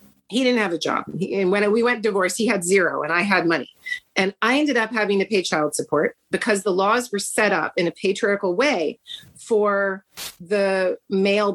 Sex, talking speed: female, 205 wpm